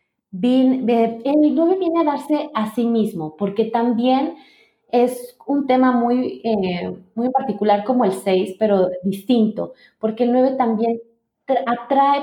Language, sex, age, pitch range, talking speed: Spanish, female, 30-49, 210-265 Hz, 135 wpm